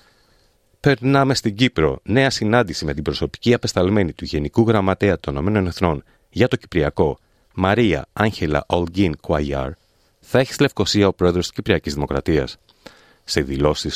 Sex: male